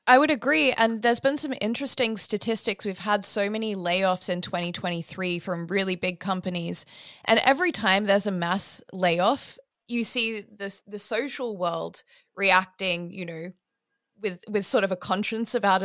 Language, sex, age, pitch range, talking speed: English, female, 20-39, 185-225 Hz, 165 wpm